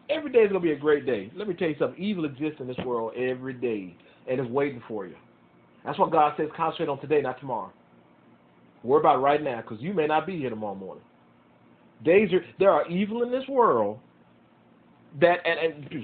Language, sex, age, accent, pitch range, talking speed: English, male, 40-59, American, 120-185 Hz, 215 wpm